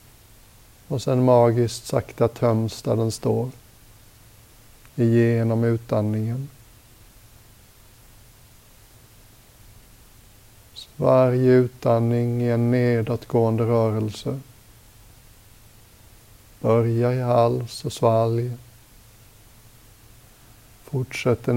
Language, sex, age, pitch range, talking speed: Swedish, male, 60-79, 110-120 Hz, 65 wpm